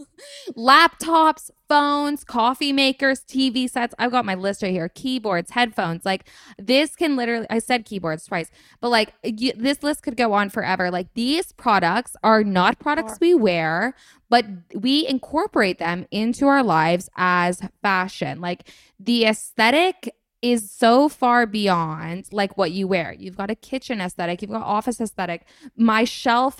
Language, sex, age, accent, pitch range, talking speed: English, female, 10-29, American, 185-245 Hz, 155 wpm